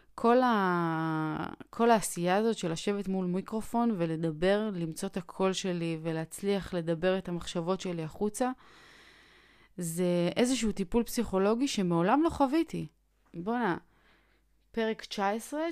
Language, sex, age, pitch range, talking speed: Hebrew, female, 30-49, 175-225 Hz, 115 wpm